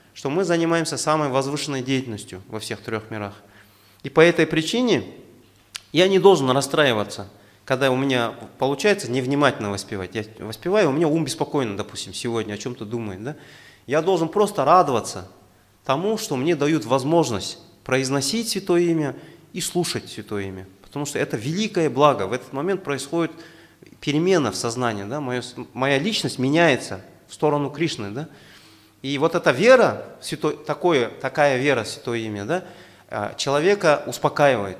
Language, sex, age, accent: Russian, male, 30-49, native